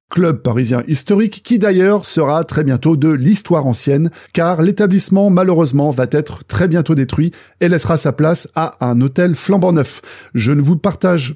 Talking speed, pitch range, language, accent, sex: 170 wpm, 150-205 Hz, French, French, male